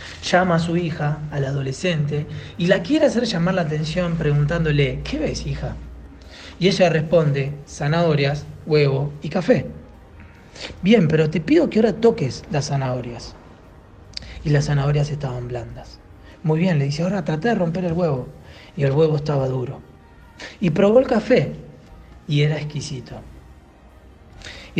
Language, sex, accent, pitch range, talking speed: Spanish, male, Argentinian, 125-170 Hz, 150 wpm